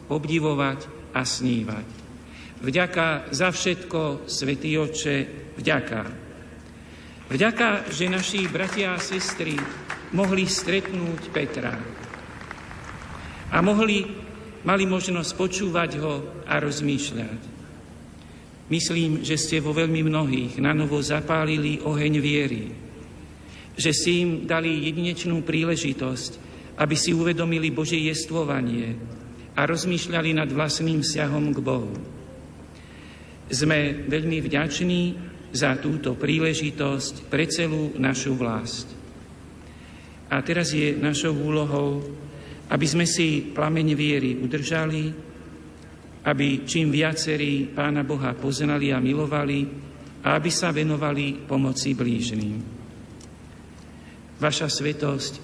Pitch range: 125-160 Hz